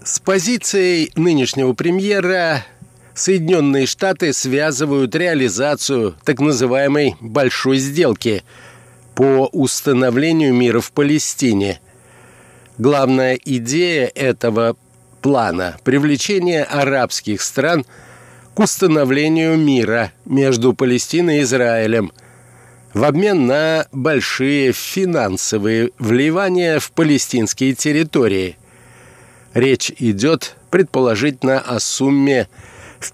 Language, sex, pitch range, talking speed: Russian, male, 120-155 Hz, 85 wpm